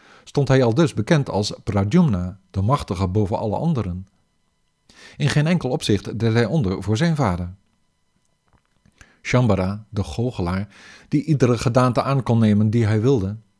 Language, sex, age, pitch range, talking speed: Dutch, male, 50-69, 100-140 Hz, 150 wpm